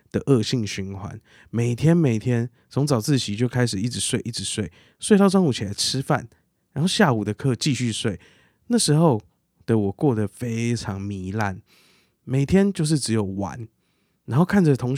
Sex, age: male, 20-39